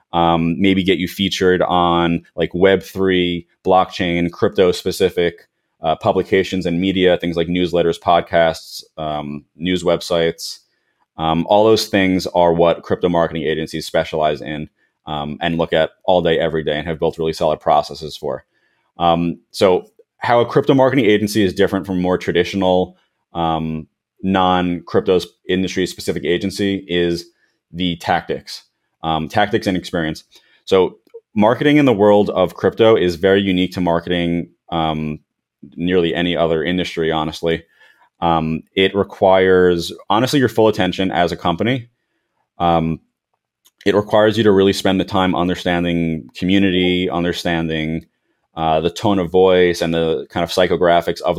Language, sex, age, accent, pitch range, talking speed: English, male, 30-49, American, 85-95 Hz, 145 wpm